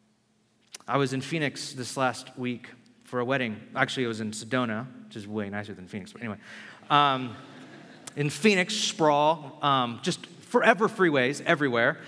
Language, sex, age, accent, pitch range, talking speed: English, male, 30-49, American, 140-210 Hz, 160 wpm